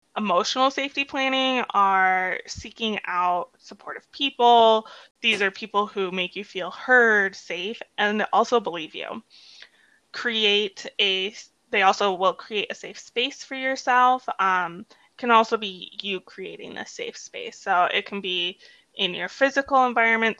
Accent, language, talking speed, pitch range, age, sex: American, English, 145 wpm, 200-245 Hz, 20-39, female